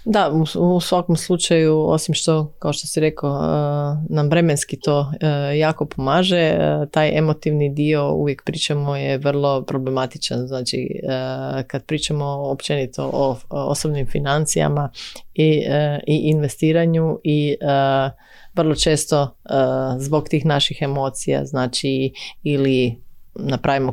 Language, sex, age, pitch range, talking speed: Croatian, female, 30-49, 135-155 Hz, 105 wpm